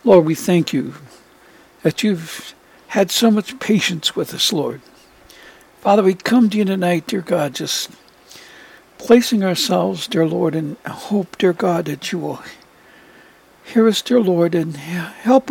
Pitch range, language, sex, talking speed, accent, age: 175-225 Hz, English, male, 150 wpm, American, 60-79